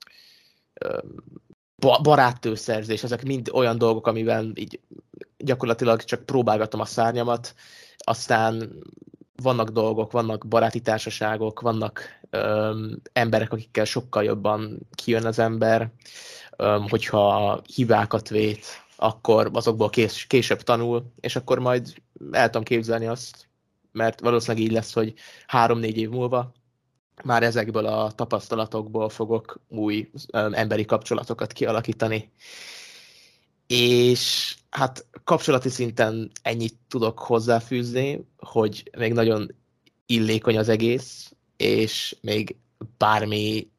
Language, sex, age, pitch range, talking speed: Hungarian, male, 20-39, 110-120 Hz, 105 wpm